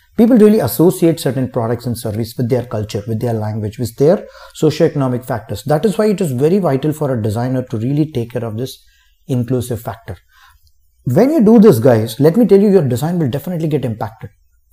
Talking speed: 205 wpm